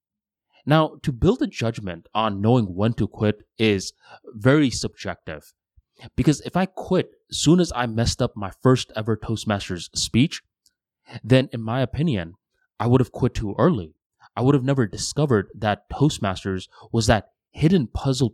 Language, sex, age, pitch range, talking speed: English, male, 20-39, 105-140 Hz, 160 wpm